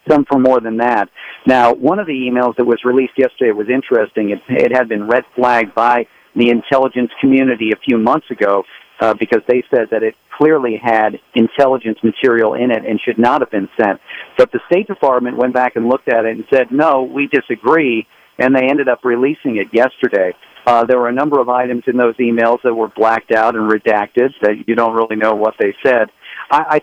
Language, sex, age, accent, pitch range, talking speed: English, male, 50-69, American, 115-140 Hz, 215 wpm